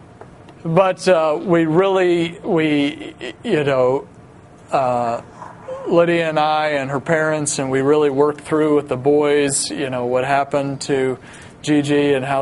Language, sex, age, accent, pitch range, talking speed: English, male, 40-59, American, 140-175 Hz, 145 wpm